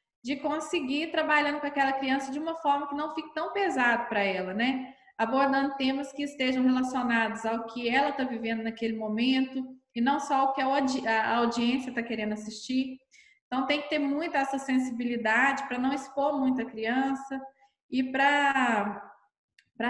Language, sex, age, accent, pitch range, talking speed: Portuguese, female, 20-39, Brazilian, 225-275 Hz, 170 wpm